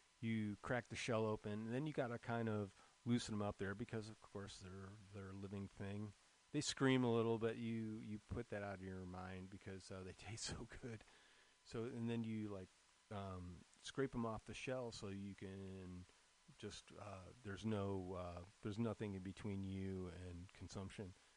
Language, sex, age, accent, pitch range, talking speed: English, male, 30-49, American, 95-110 Hz, 190 wpm